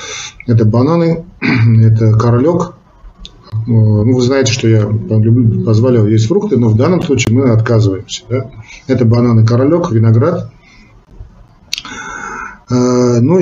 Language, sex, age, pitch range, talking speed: Russian, male, 50-69, 110-130 Hz, 110 wpm